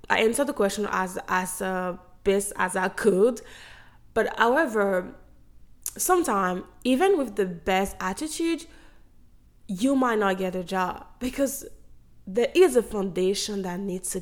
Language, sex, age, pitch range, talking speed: English, female, 20-39, 190-265 Hz, 140 wpm